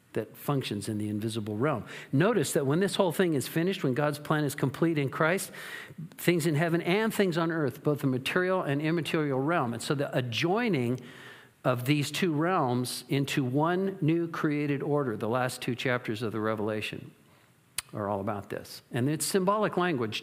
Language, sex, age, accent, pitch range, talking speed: English, male, 50-69, American, 125-170 Hz, 185 wpm